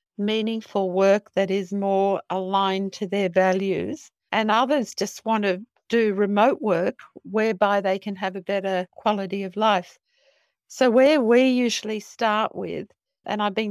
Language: English